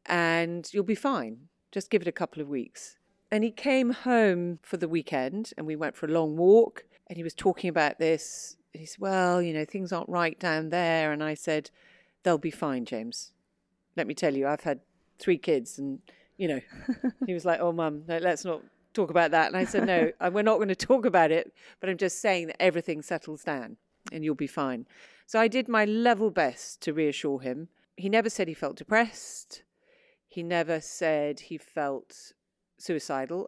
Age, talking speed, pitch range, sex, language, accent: 40-59, 205 wpm, 155-195 Hz, female, English, British